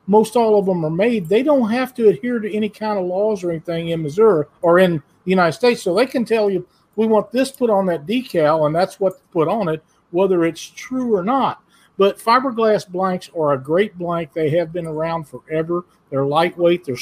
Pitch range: 150-200 Hz